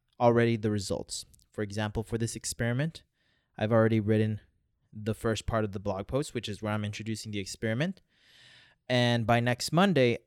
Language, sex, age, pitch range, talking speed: English, male, 20-39, 105-130 Hz, 170 wpm